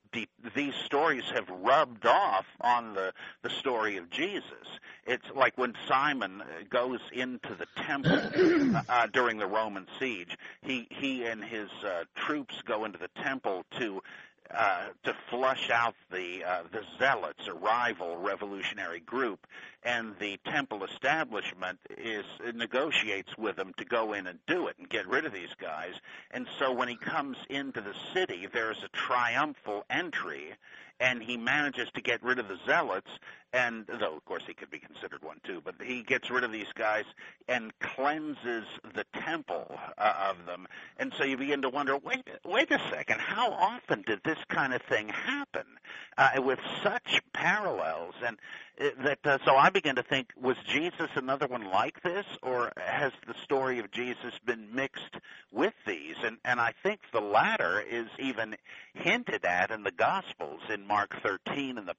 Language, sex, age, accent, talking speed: English, male, 50-69, American, 175 wpm